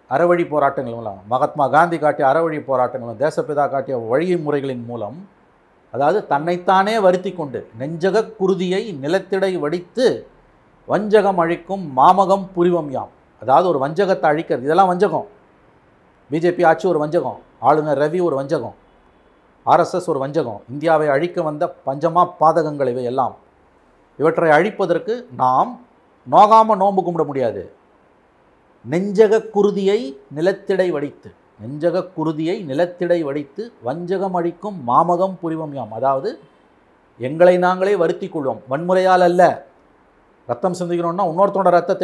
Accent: native